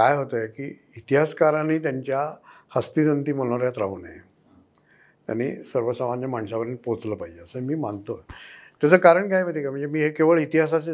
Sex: male